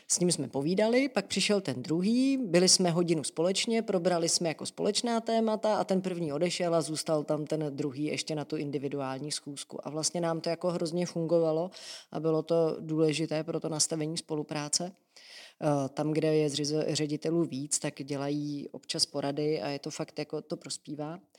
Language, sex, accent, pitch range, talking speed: Czech, female, native, 150-175 Hz, 175 wpm